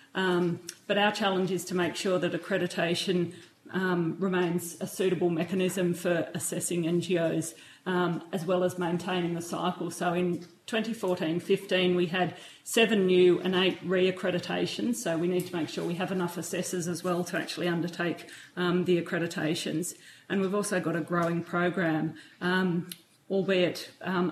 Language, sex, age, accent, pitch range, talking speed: English, female, 40-59, Australian, 175-190 Hz, 155 wpm